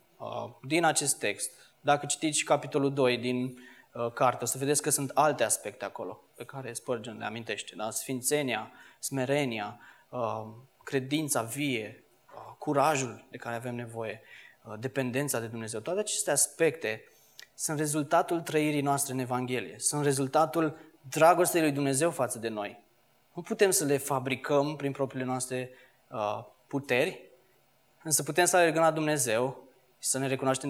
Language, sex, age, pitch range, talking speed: Romanian, male, 20-39, 125-150 Hz, 135 wpm